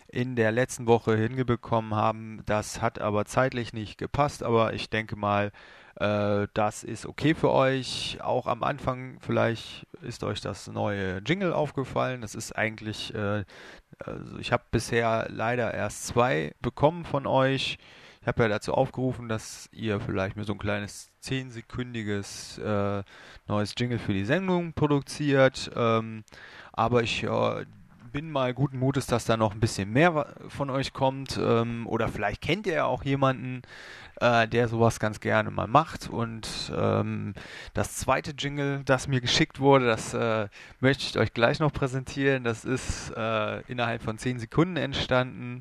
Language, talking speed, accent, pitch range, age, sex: English, 155 wpm, German, 110-135 Hz, 30-49, male